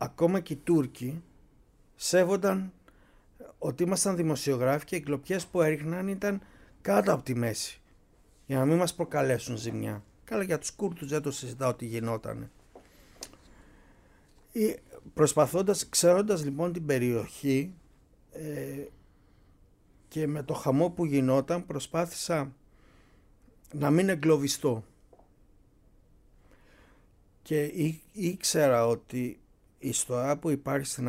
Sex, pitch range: male, 115-160 Hz